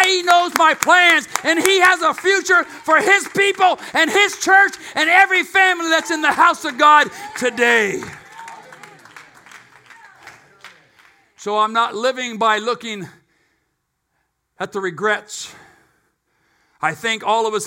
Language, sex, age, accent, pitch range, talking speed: English, male, 50-69, American, 195-250 Hz, 130 wpm